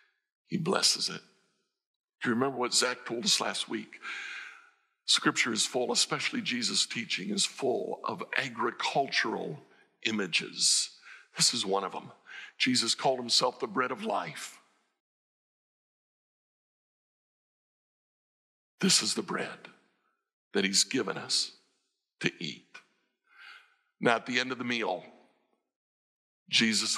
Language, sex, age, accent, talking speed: English, male, 60-79, American, 120 wpm